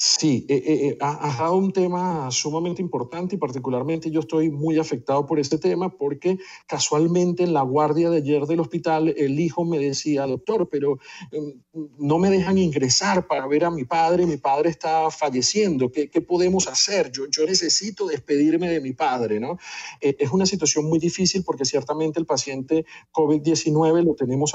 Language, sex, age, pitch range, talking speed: Spanish, male, 50-69, 135-165 Hz, 180 wpm